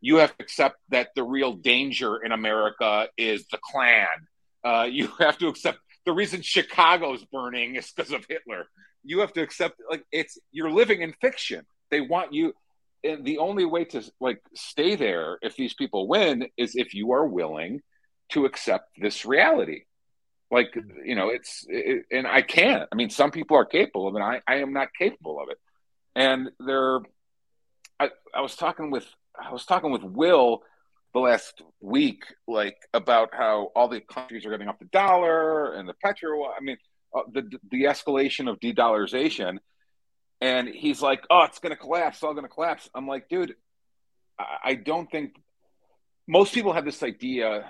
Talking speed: 180 wpm